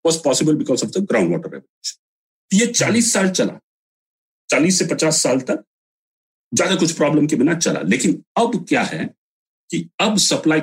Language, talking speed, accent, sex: Hindi, 165 wpm, native, male